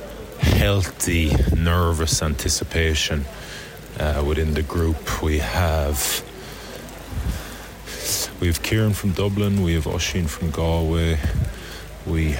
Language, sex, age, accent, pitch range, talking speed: English, male, 30-49, Irish, 75-90 Hz, 95 wpm